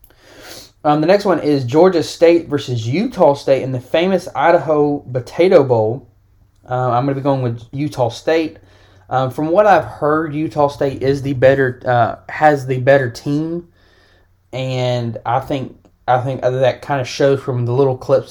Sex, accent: male, American